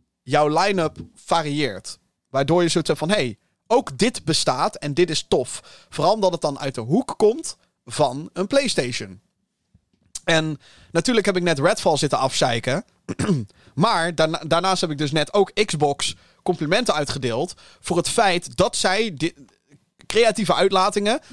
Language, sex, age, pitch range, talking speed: Dutch, male, 30-49, 140-180 Hz, 155 wpm